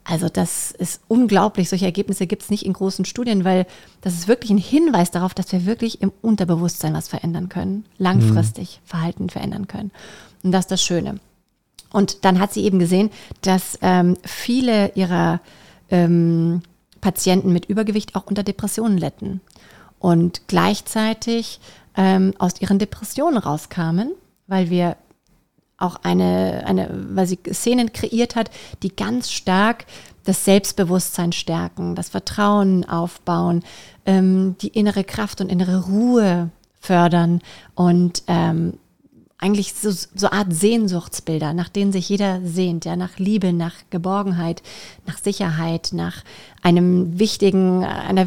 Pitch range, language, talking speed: 175-205 Hz, German, 135 wpm